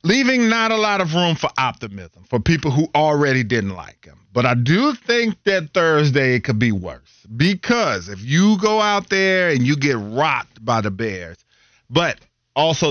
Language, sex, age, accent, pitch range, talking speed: English, male, 40-59, American, 115-145 Hz, 185 wpm